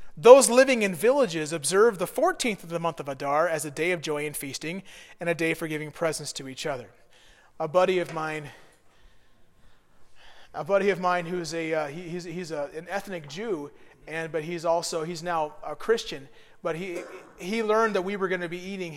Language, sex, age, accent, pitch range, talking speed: English, male, 30-49, American, 145-180 Hz, 205 wpm